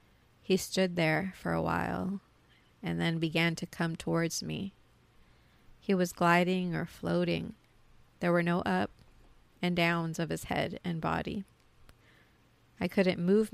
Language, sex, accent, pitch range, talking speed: English, female, American, 160-180 Hz, 140 wpm